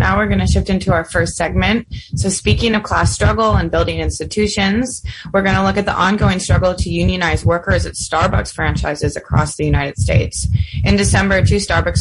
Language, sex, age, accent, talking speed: English, female, 20-39, American, 185 wpm